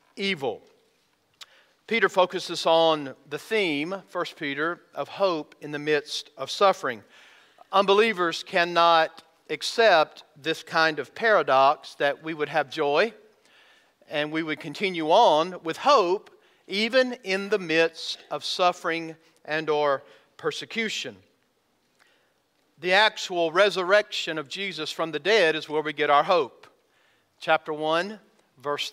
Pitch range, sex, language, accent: 155-205 Hz, male, English, American